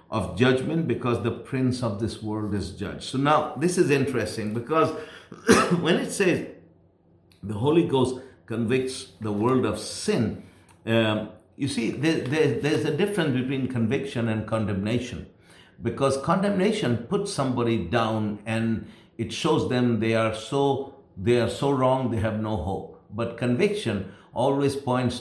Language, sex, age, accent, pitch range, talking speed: English, male, 60-79, Indian, 110-135 Hz, 145 wpm